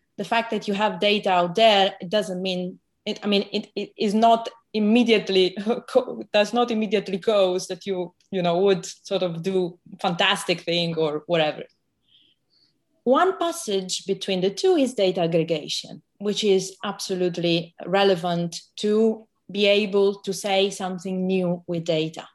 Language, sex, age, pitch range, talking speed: English, female, 30-49, 185-255 Hz, 150 wpm